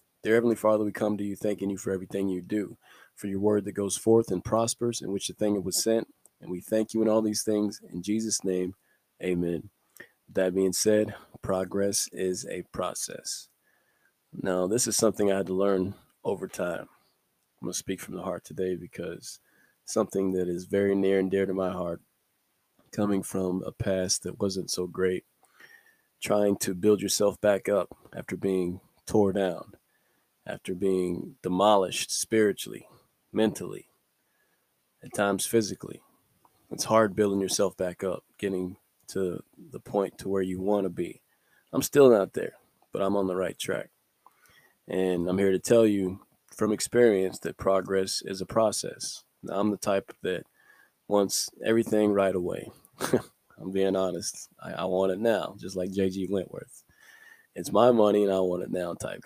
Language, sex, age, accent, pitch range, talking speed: English, male, 20-39, American, 95-105 Hz, 170 wpm